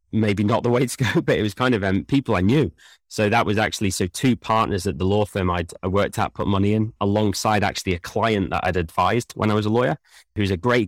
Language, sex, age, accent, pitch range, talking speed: English, male, 30-49, British, 90-110 Hz, 260 wpm